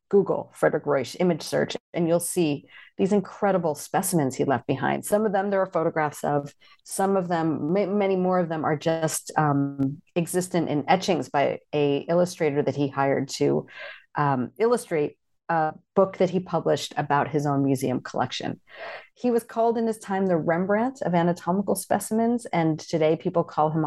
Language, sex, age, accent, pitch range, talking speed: English, female, 40-59, American, 150-200 Hz, 175 wpm